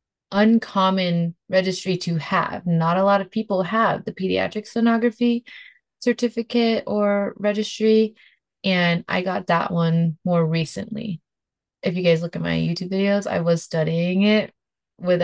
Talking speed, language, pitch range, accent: 140 wpm, English, 170-210 Hz, American